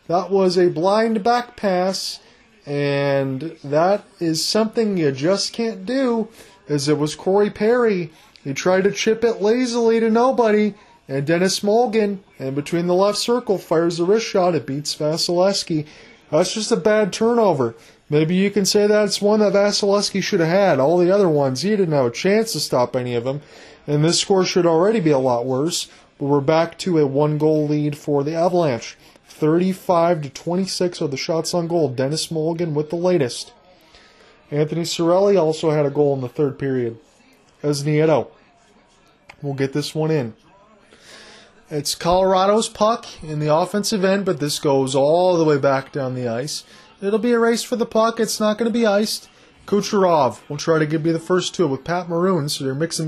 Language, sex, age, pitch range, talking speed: English, male, 30-49, 150-200 Hz, 190 wpm